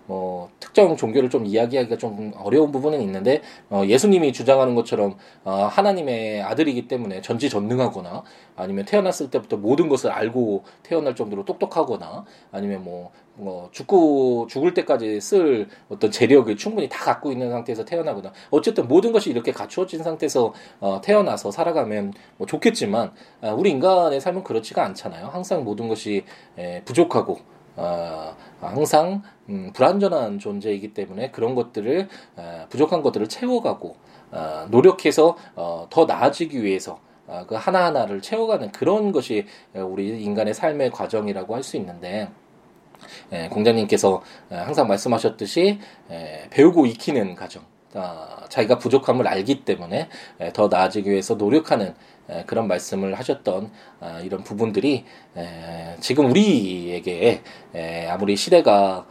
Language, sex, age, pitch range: Korean, male, 20-39, 95-165 Hz